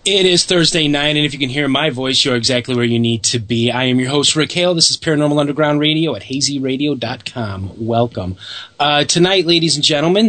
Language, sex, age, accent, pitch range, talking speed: English, male, 30-49, American, 110-150 Hz, 215 wpm